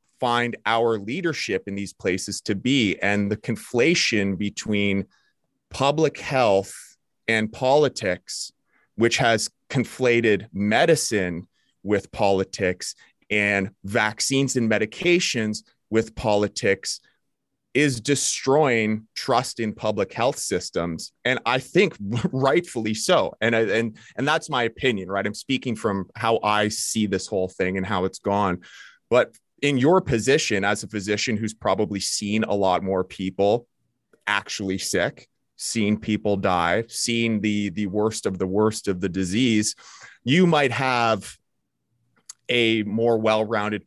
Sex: male